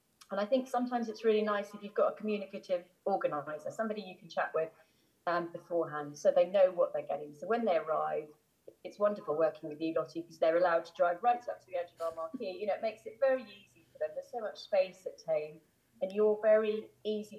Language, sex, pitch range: English, female, 175-275 Hz